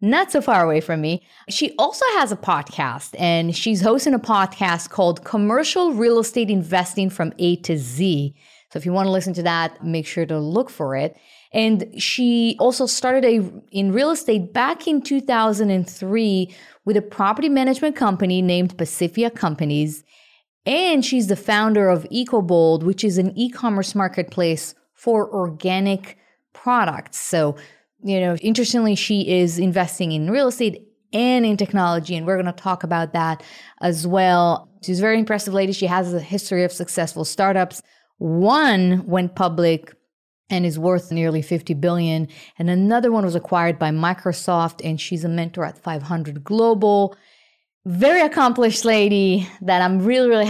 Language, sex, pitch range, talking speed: English, female, 175-225 Hz, 160 wpm